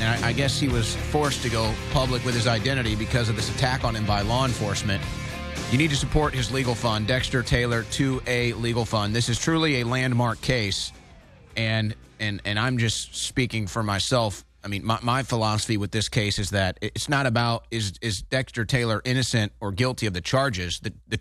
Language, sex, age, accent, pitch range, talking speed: English, male, 30-49, American, 105-140 Hz, 205 wpm